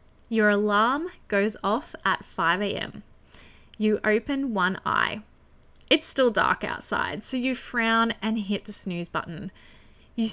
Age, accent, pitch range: 20-39, Australian, 190-265 Hz